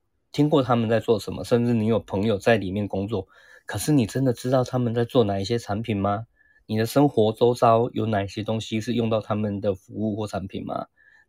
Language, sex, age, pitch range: Chinese, male, 20-39, 100-120 Hz